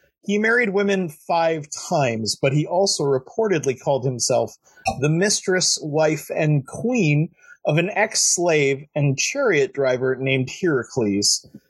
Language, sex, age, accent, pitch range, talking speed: English, male, 30-49, American, 140-195 Hz, 125 wpm